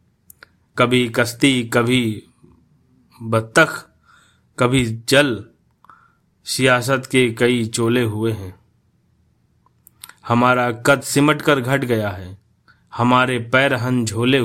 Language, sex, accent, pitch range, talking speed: Hindi, male, native, 110-135 Hz, 90 wpm